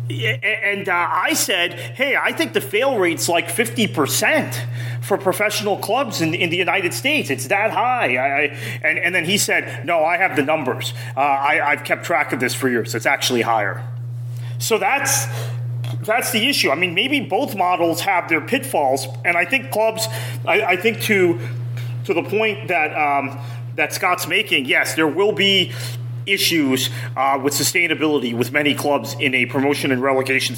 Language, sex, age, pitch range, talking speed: English, male, 30-49, 120-165 Hz, 185 wpm